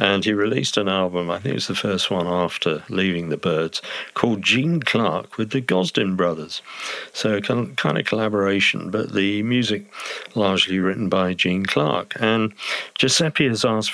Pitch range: 90-110 Hz